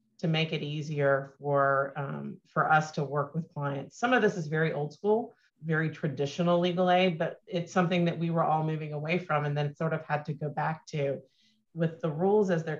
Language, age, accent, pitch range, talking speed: English, 40-59, American, 145-170 Hz, 220 wpm